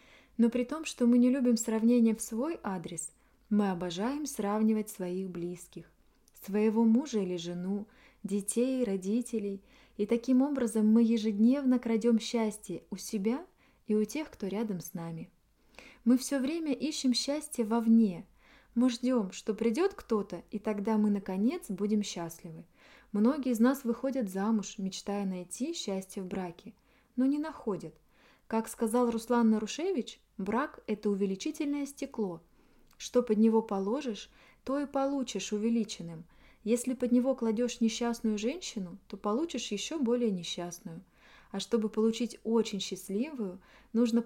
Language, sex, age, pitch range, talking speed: Russian, female, 20-39, 200-245 Hz, 135 wpm